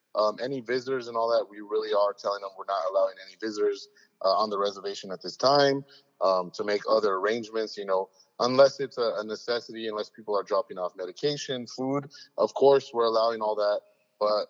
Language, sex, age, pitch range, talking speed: English, male, 30-49, 105-125 Hz, 205 wpm